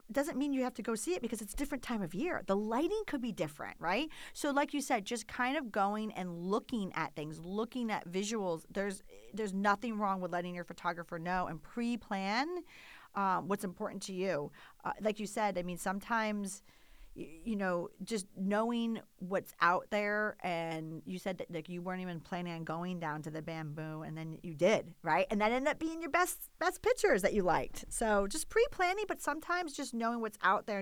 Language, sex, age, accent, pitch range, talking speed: English, female, 40-59, American, 180-250 Hz, 210 wpm